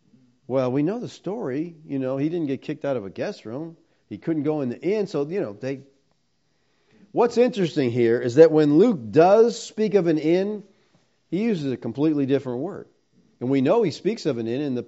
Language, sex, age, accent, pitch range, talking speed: English, male, 50-69, American, 125-175 Hz, 220 wpm